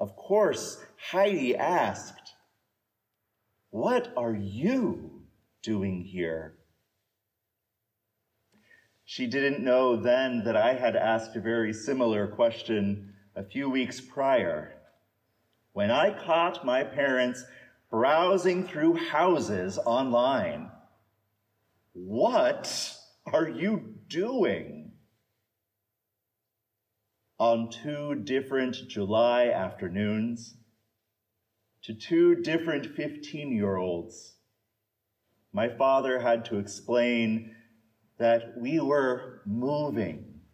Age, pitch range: 50-69, 105-125 Hz